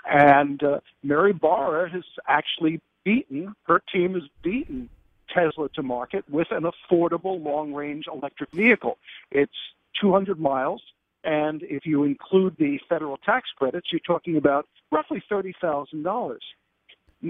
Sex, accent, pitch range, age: male, American, 145-190 Hz, 50-69